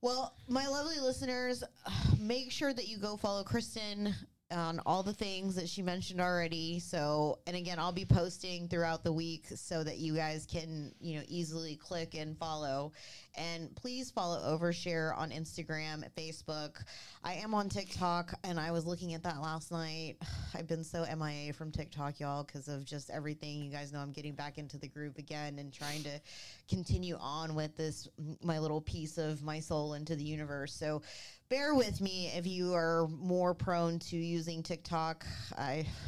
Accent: American